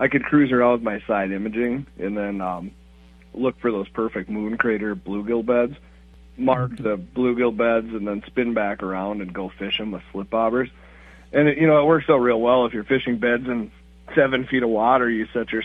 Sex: male